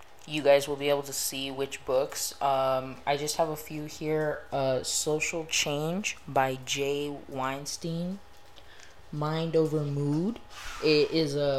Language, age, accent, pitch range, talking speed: English, 20-39, American, 130-150 Hz, 145 wpm